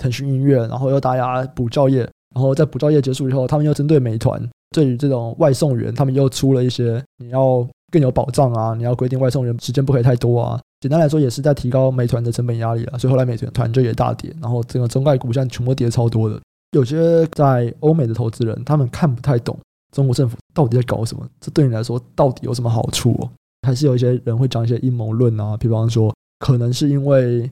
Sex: male